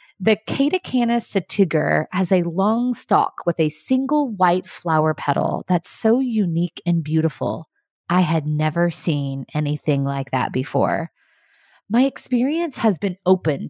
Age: 20-39